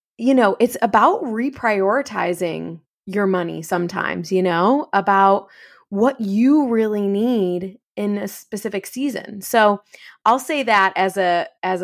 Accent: American